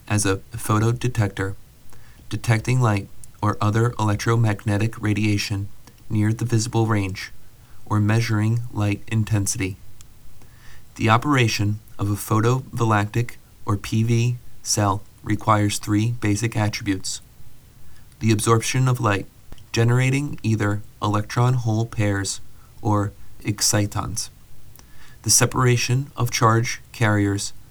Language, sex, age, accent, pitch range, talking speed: English, male, 30-49, American, 105-120 Hz, 95 wpm